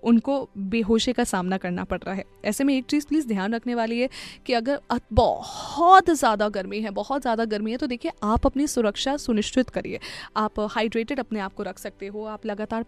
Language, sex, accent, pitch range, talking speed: Hindi, female, native, 210-260 Hz, 205 wpm